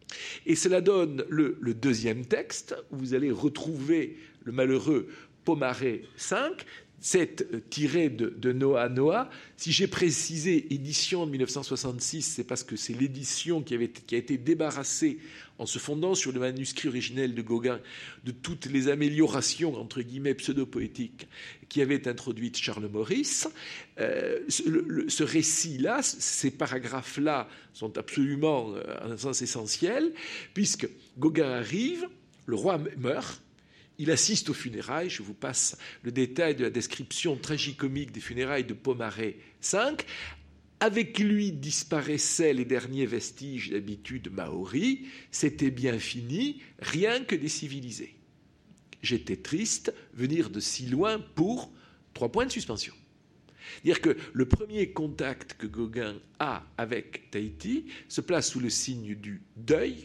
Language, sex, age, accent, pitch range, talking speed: French, male, 50-69, French, 125-165 Hz, 145 wpm